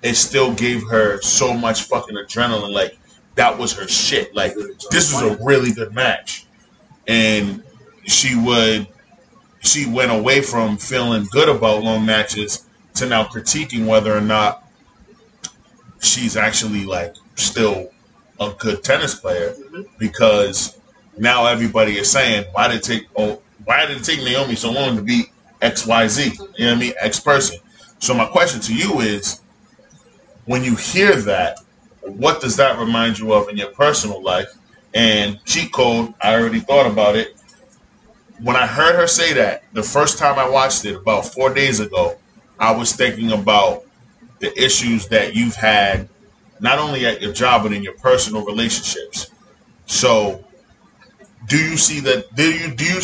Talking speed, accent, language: 165 wpm, American, English